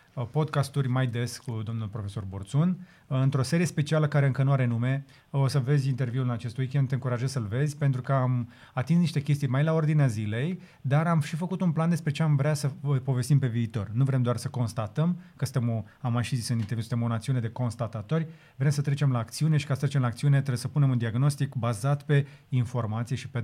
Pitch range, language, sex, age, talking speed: 120-145 Hz, Romanian, male, 30-49, 225 wpm